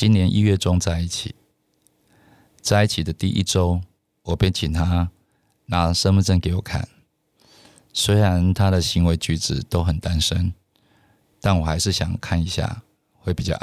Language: Chinese